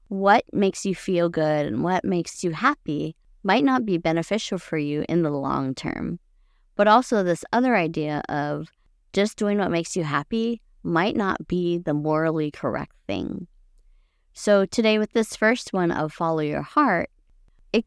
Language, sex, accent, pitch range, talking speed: English, female, American, 155-200 Hz, 170 wpm